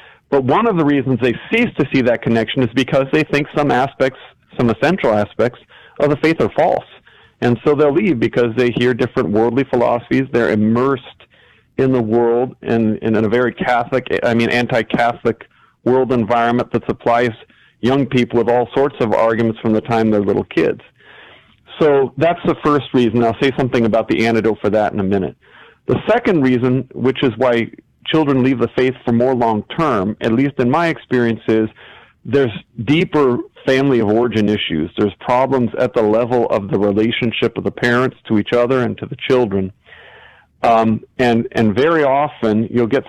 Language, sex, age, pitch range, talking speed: English, male, 40-59, 115-135 Hz, 180 wpm